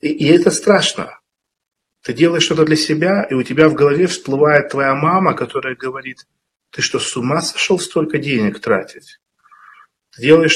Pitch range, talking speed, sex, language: 130-160 Hz, 160 wpm, male, Russian